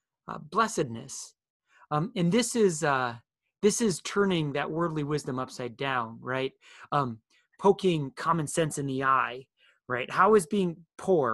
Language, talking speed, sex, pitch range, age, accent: English, 150 wpm, male, 130-180 Hz, 30-49, American